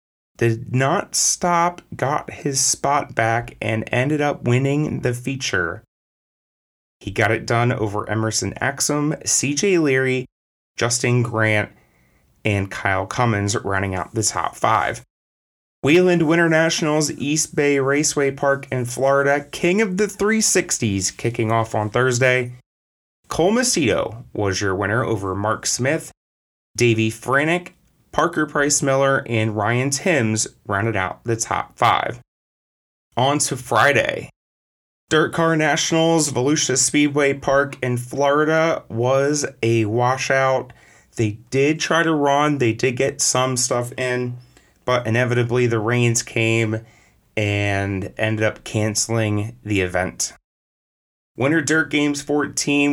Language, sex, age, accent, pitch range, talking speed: English, male, 30-49, American, 110-145 Hz, 125 wpm